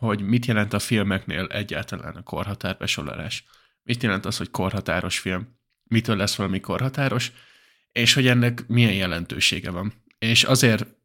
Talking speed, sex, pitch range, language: 140 wpm, male, 100-120 Hz, Hungarian